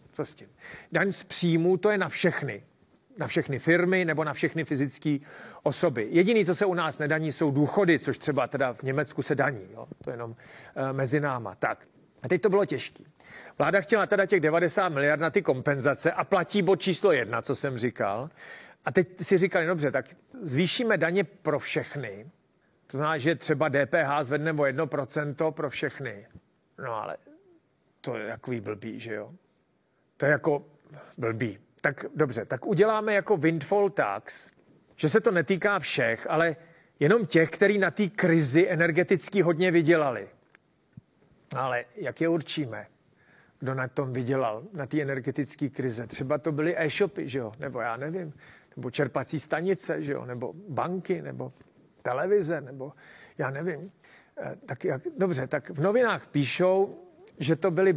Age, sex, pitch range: 40-59, male, 140-185 Hz